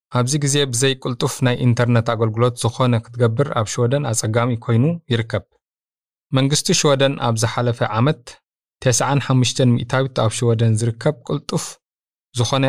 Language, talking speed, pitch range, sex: Amharic, 120 wpm, 110-130 Hz, male